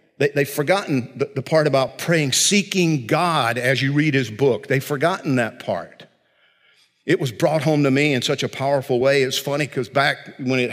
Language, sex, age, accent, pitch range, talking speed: English, male, 50-69, American, 120-145 Hz, 200 wpm